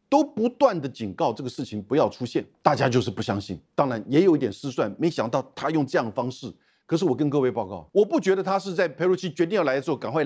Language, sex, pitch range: Chinese, male, 110-175 Hz